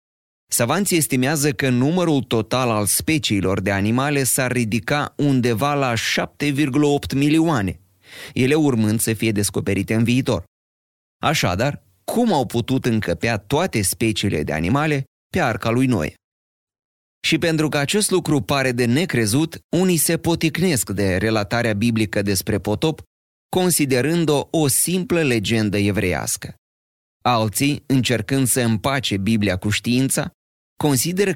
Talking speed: 120 wpm